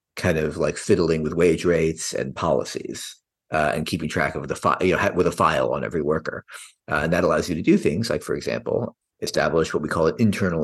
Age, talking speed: 50-69, 230 wpm